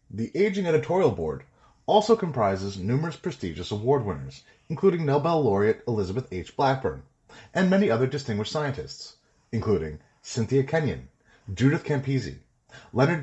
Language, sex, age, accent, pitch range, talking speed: English, male, 30-49, American, 95-135 Hz, 120 wpm